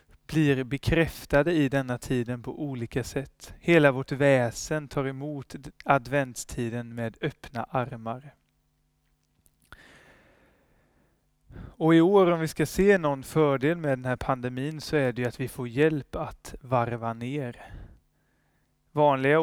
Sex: male